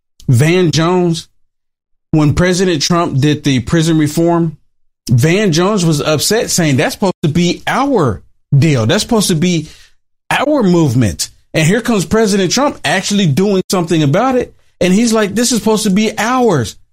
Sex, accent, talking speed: male, American, 160 wpm